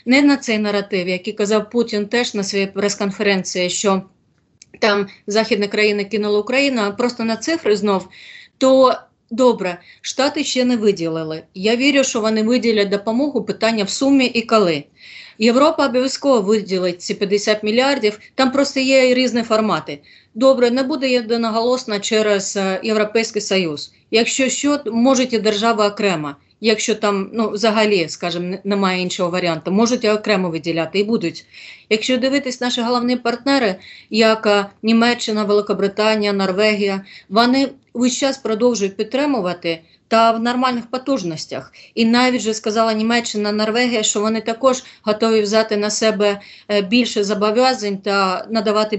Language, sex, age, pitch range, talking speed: Russian, female, 30-49, 205-245 Hz, 135 wpm